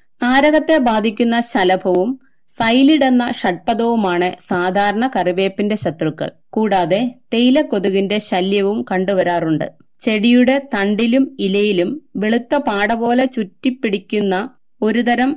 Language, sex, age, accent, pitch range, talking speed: Malayalam, female, 30-49, native, 190-245 Hz, 80 wpm